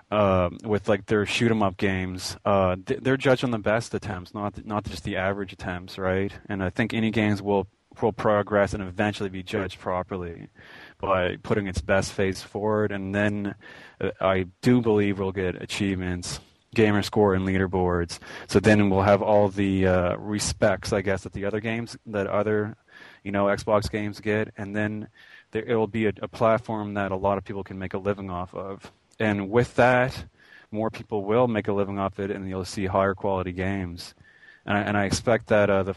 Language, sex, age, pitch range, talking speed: English, male, 20-39, 95-105 Hz, 205 wpm